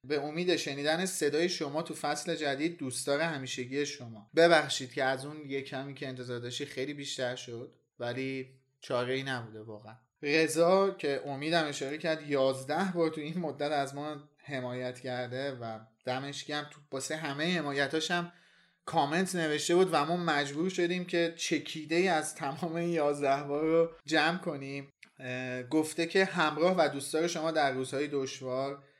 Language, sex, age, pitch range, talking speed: Persian, male, 30-49, 125-155 Hz, 150 wpm